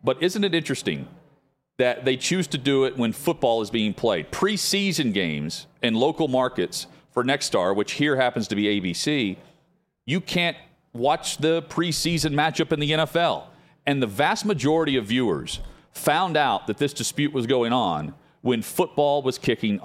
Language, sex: English, male